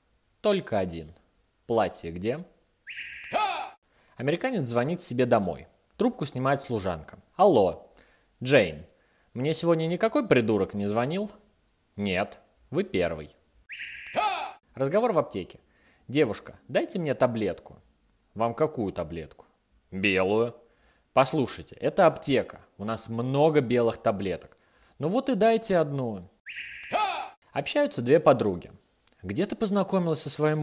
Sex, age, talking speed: male, 20-39, 105 wpm